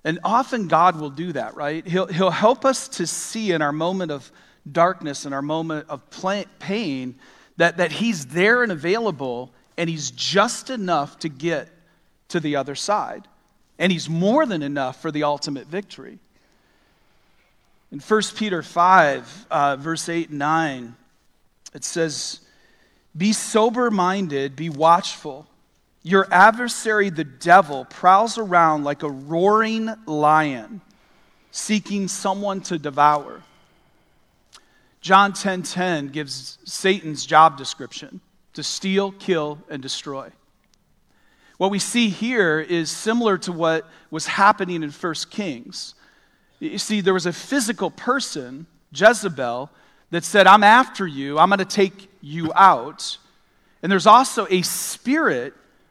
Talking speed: 135 wpm